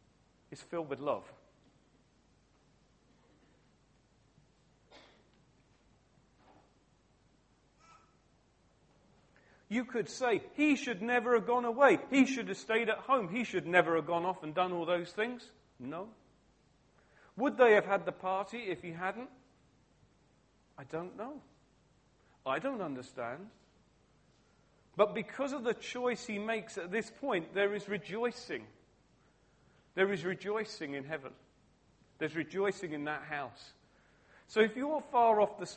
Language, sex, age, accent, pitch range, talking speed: English, male, 40-59, British, 155-225 Hz, 125 wpm